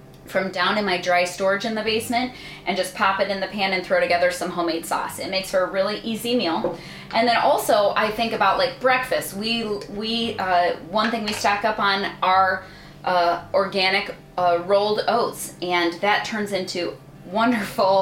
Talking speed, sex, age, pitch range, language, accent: 190 wpm, female, 20-39, 180-220 Hz, English, American